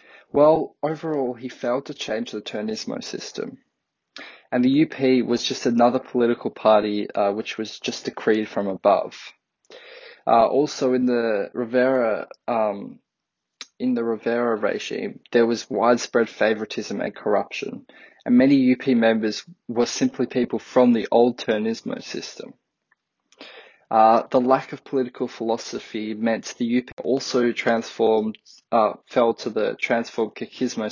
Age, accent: 20-39, Australian